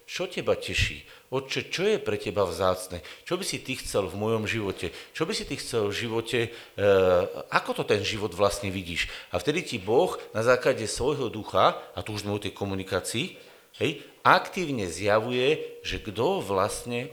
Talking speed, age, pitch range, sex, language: 175 wpm, 50-69, 115-160 Hz, male, Slovak